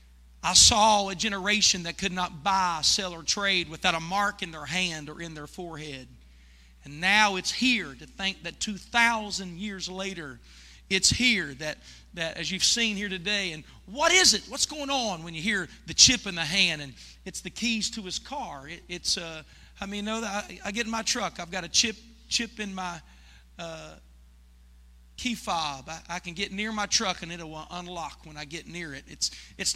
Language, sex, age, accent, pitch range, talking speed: English, male, 40-59, American, 160-230 Hz, 210 wpm